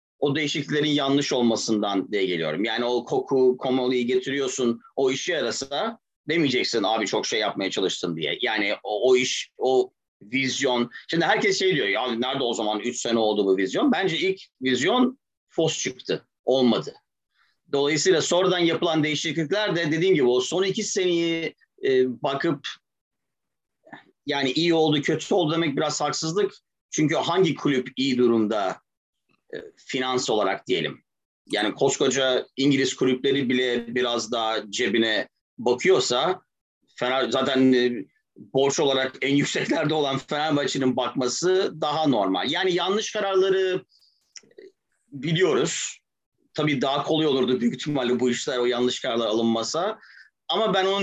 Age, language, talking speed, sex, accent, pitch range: 40-59, Turkish, 135 wpm, male, native, 125-175 Hz